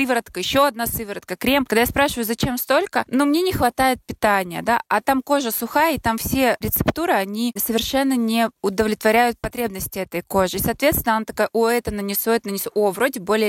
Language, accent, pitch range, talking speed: Russian, native, 200-250 Hz, 190 wpm